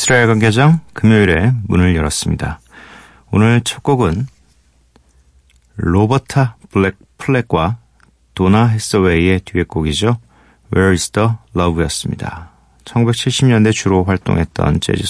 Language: Korean